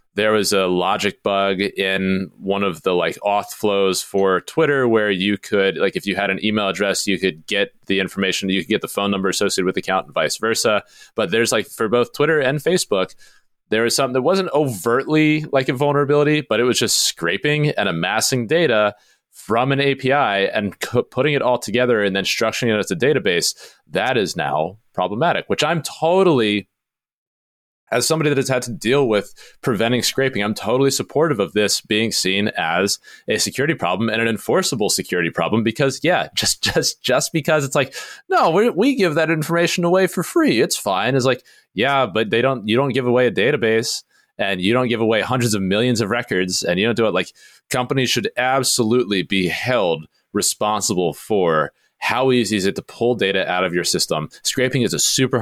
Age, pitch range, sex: 30-49, 100-140 Hz, male